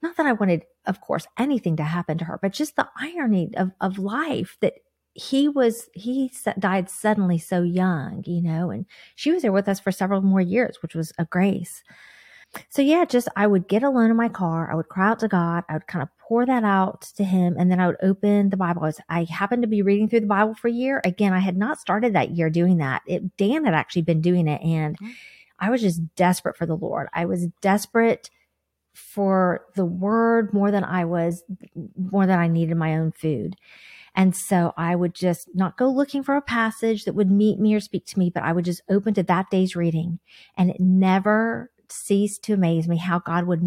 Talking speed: 230 wpm